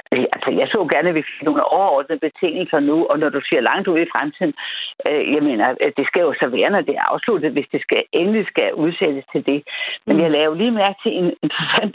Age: 60-79